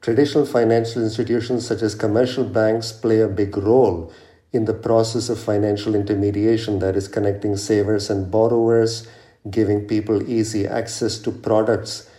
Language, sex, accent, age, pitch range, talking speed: English, male, Indian, 50-69, 110-125 Hz, 145 wpm